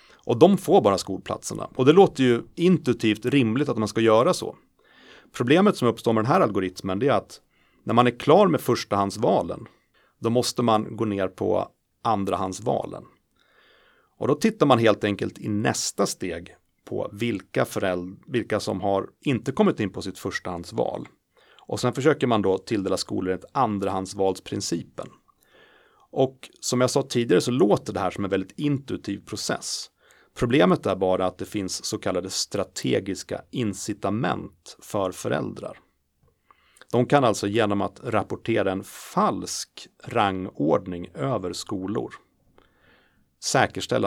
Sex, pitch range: male, 95-125 Hz